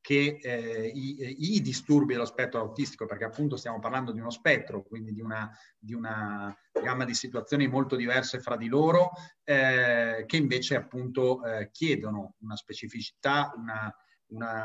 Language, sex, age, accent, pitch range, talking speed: Italian, male, 30-49, native, 115-140 Hz, 155 wpm